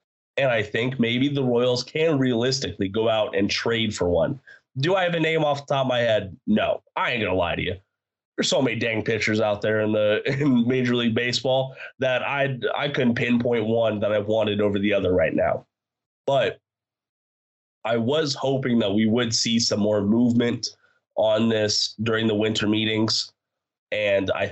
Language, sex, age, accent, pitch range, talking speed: English, male, 20-39, American, 105-130 Hz, 195 wpm